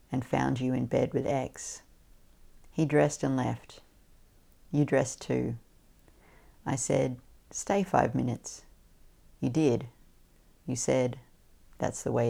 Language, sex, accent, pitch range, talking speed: English, female, Australian, 90-145 Hz, 125 wpm